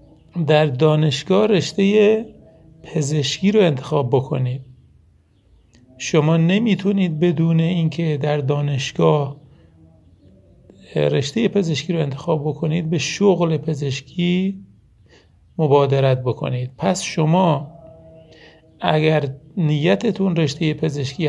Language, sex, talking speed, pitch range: Persian, male, 80 wpm, 145-180 Hz